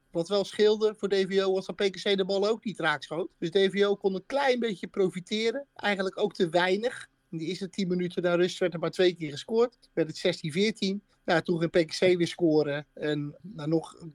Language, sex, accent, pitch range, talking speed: Dutch, male, Dutch, 165-200 Hz, 220 wpm